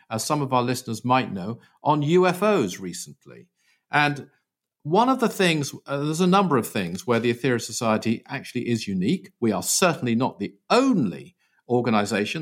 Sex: male